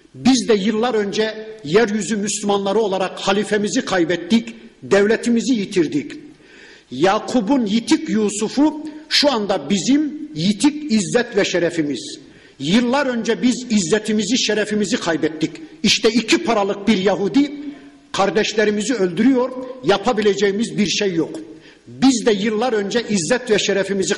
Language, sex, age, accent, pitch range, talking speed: Turkish, male, 50-69, native, 185-240 Hz, 110 wpm